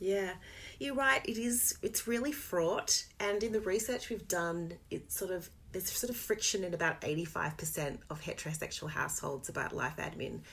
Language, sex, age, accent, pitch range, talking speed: English, female, 30-49, Australian, 150-190 Hz, 180 wpm